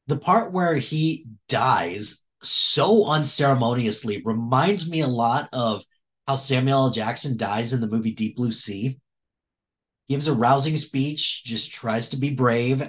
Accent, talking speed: American, 150 wpm